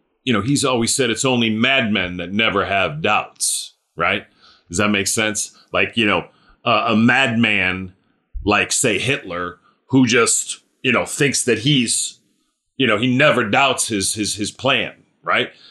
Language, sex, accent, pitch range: English, male, American, 100-130 Hz